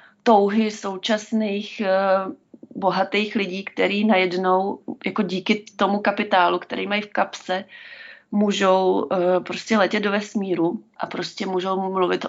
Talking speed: 105 wpm